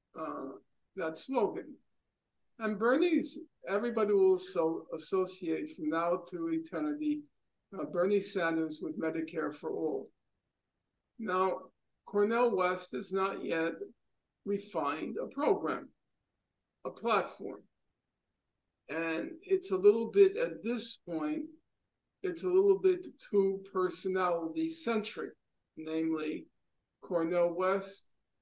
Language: English